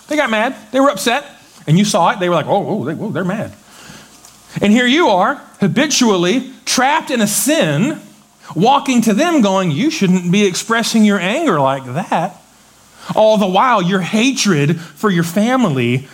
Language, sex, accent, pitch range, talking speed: English, male, American, 165-210 Hz, 175 wpm